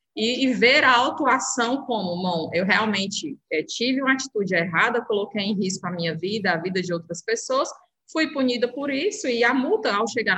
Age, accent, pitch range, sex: 20-39, Brazilian, 200-250 Hz, female